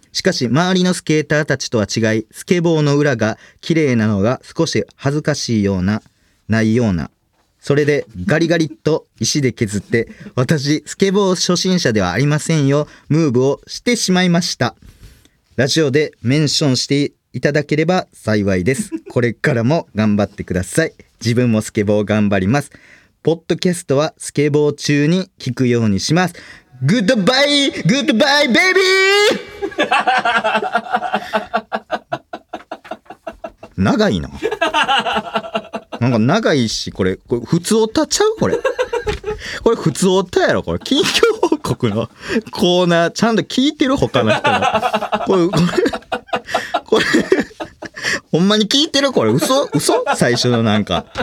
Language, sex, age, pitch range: Japanese, male, 40-59, 120-190 Hz